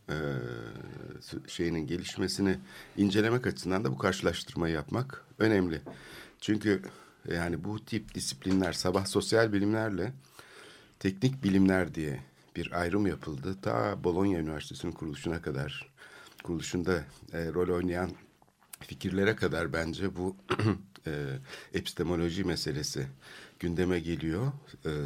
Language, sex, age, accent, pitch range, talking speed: Turkish, male, 60-79, native, 80-105 Hz, 105 wpm